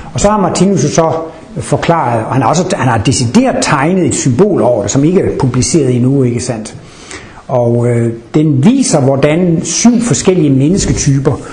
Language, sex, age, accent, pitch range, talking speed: Danish, male, 60-79, native, 130-180 Hz, 155 wpm